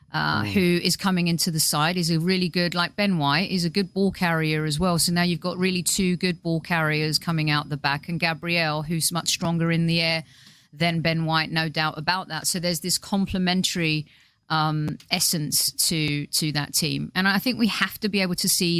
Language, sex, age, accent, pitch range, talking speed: English, female, 40-59, British, 155-185 Hz, 215 wpm